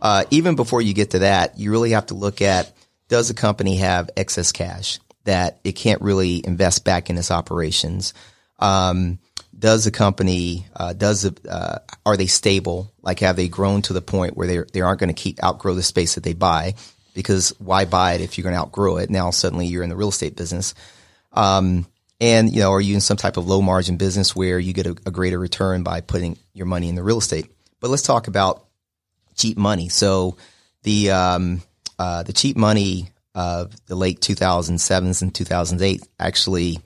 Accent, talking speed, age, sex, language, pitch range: American, 205 wpm, 30-49, male, English, 90-100 Hz